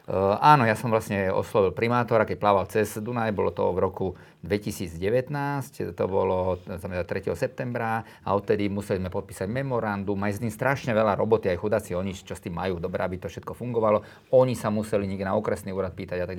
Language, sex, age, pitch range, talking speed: Slovak, male, 40-59, 95-115 Hz, 195 wpm